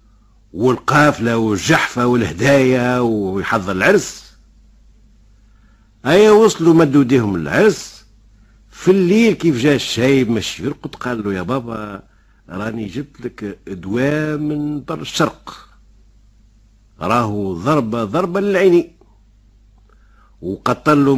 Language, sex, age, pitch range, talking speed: Arabic, male, 60-79, 105-140 Hz, 90 wpm